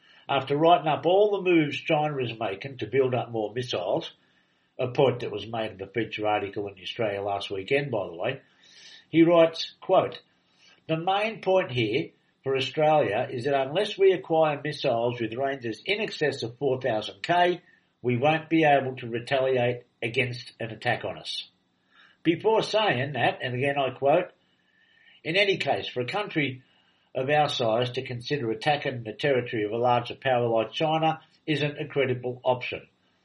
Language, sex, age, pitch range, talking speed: English, male, 60-79, 120-160 Hz, 170 wpm